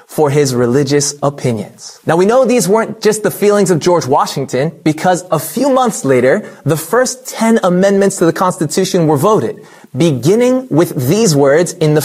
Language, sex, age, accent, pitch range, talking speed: English, male, 30-49, American, 150-210 Hz, 175 wpm